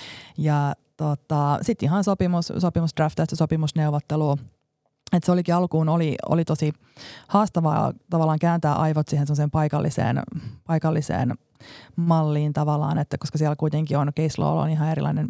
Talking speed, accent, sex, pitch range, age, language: 140 wpm, native, female, 145-165 Hz, 30-49, Finnish